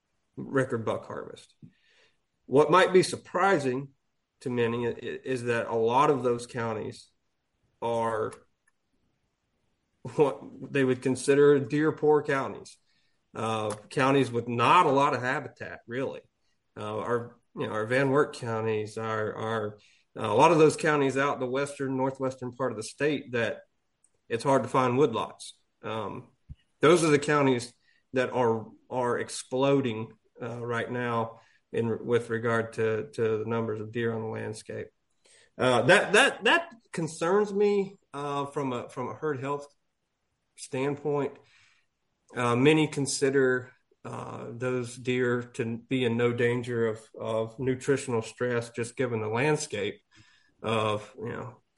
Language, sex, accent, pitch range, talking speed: English, male, American, 115-145 Hz, 140 wpm